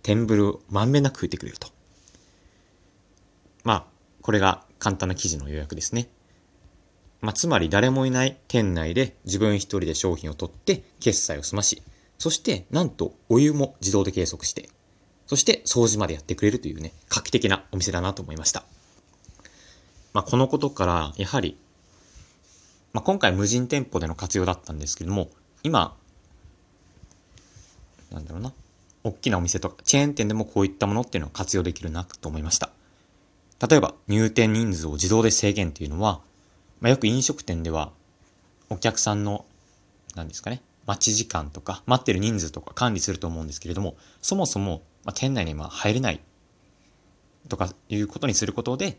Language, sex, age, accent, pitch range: Japanese, male, 30-49, native, 90-110 Hz